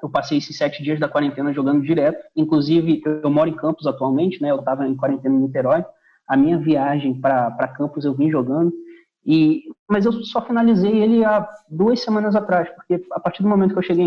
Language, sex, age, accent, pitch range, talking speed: Portuguese, male, 20-39, Brazilian, 145-180 Hz, 205 wpm